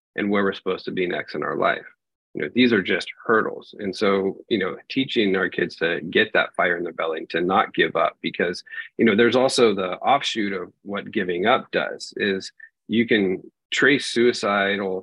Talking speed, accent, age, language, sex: 210 wpm, American, 40-59, English, male